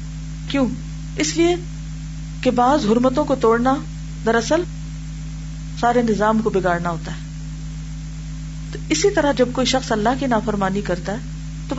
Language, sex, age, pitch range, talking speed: Urdu, female, 40-59, 155-235 Hz, 135 wpm